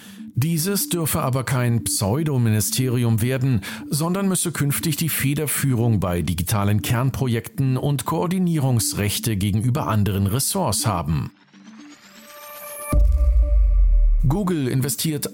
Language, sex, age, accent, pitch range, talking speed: German, male, 50-69, German, 105-150 Hz, 85 wpm